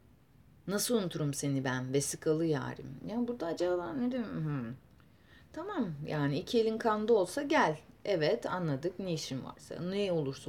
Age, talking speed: 30-49, 155 wpm